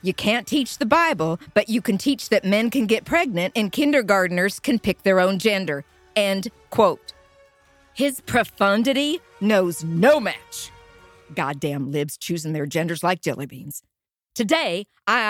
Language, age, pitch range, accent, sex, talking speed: English, 50-69, 180-255 Hz, American, female, 150 wpm